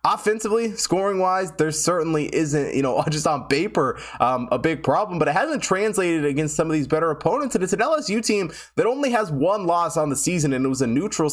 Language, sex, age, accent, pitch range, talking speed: English, male, 20-39, American, 125-160 Hz, 230 wpm